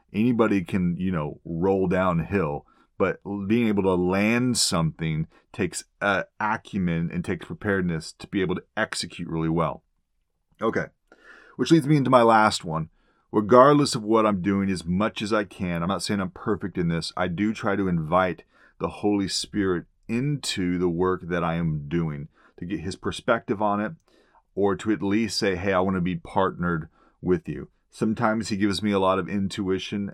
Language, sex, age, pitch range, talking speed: English, male, 30-49, 85-105 Hz, 185 wpm